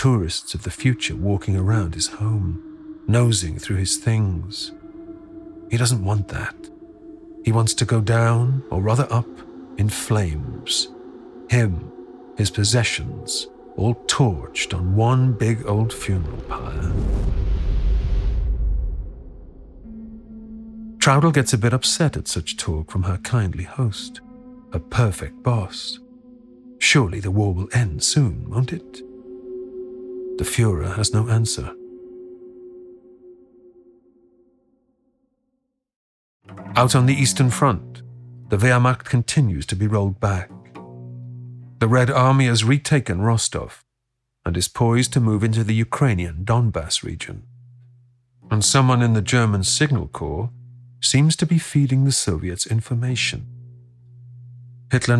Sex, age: male, 50-69